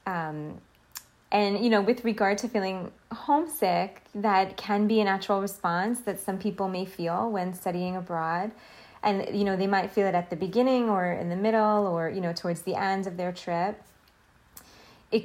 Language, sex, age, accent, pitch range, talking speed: English, female, 20-39, American, 180-210 Hz, 185 wpm